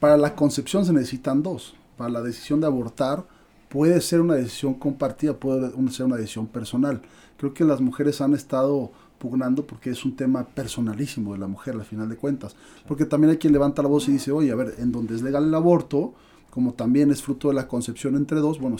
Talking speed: 215 wpm